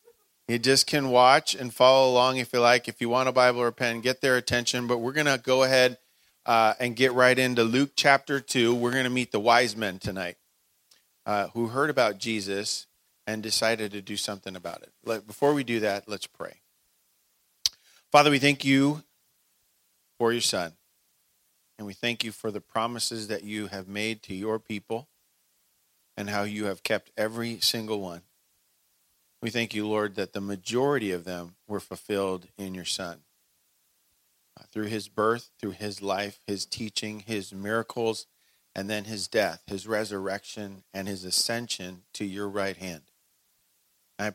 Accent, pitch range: American, 100-120 Hz